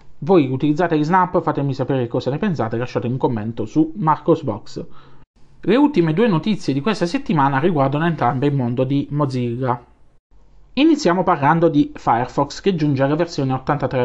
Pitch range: 130-175 Hz